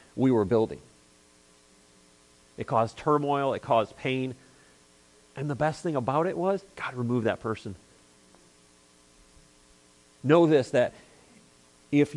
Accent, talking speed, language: American, 120 wpm, English